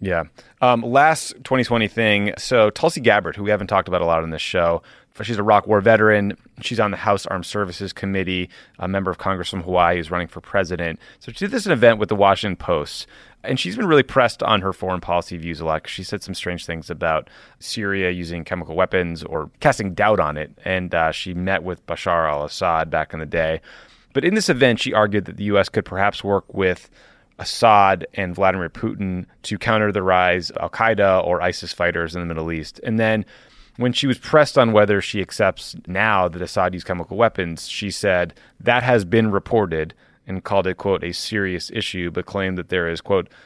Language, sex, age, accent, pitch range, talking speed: English, male, 30-49, American, 85-110 Hz, 215 wpm